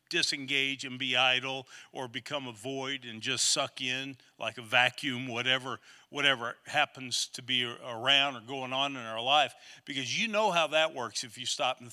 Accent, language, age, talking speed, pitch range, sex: American, English, 50-69, 185 wpm, 130-155 Hz, male